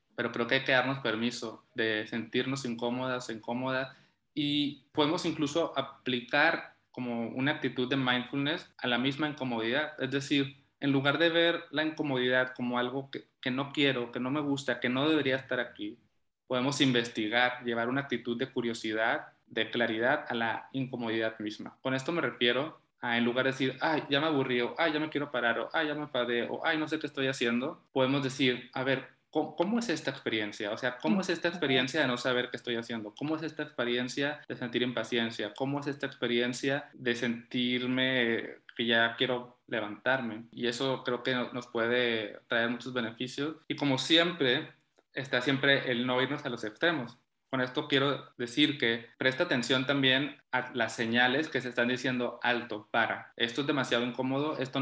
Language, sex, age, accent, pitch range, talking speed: Spanish, male, 20-39, Mexican, 120-140 Hz, 185 wpm